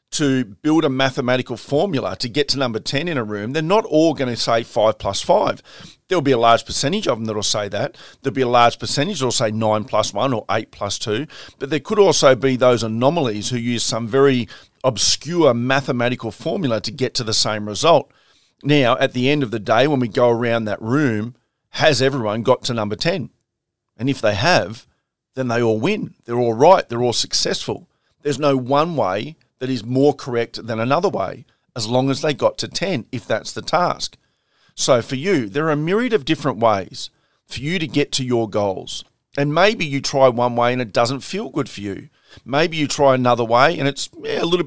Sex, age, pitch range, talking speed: male, 40-59, 115-140 Hz, 215 wpm